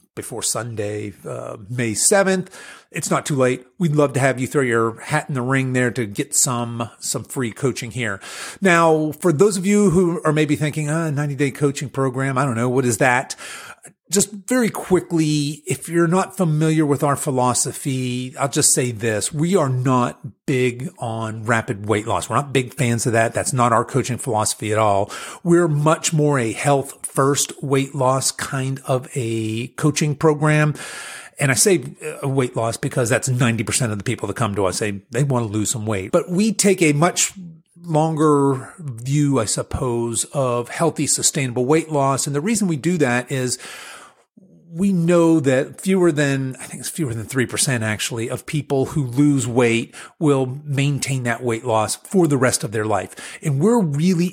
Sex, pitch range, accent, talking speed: male, 120-155 Hz, American, 185 wpm